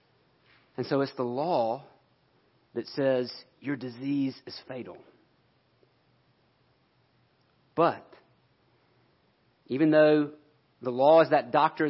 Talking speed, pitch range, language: 95 wpm, 130-160 Hz, English